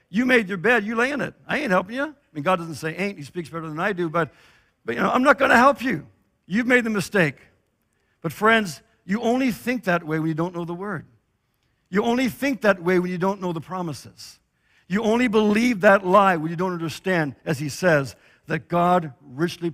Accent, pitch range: American, 145-190 Hz